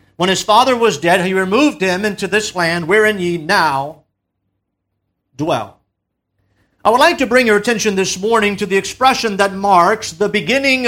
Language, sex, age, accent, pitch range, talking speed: English, male, 50-69, American, 170-235 Hz, 170 wpm